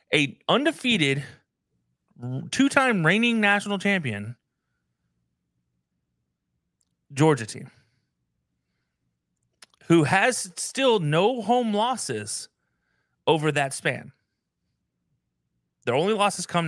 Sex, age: male, 30-49